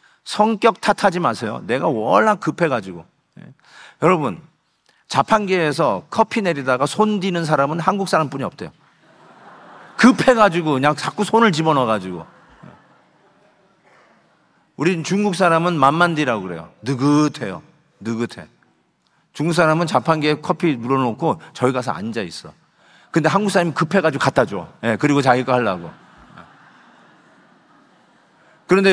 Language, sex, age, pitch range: Korean, male, 40-59, 135-180 Hz